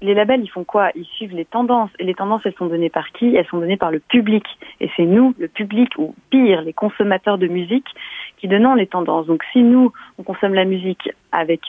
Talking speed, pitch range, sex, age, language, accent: 235 wpm, 180-215 Hz, female, 30-49, French, French